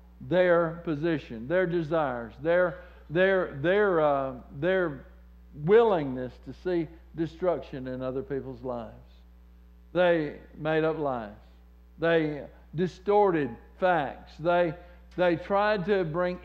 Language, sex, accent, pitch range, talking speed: English, male, American, 150-205 Hz, 105 wpm